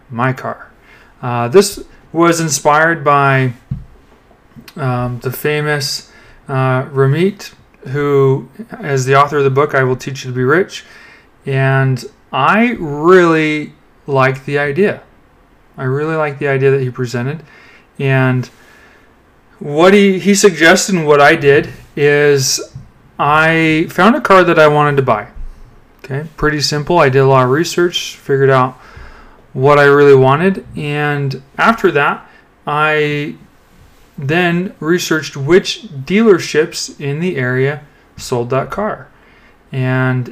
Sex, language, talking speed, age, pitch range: male, English, 130 wpm, 30-49, 130-160 Hz